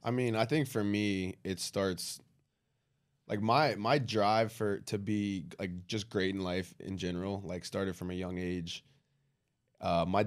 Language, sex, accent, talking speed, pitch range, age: English, male, American, 180 wpm, 95-125 Hz, 20-39